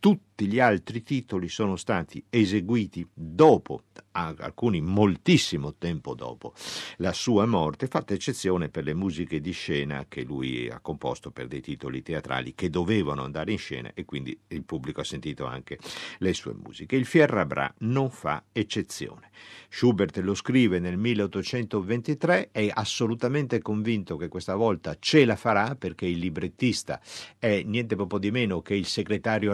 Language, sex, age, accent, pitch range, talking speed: Italian, male, 50-69, native, 85-115 Hz, 155 wpm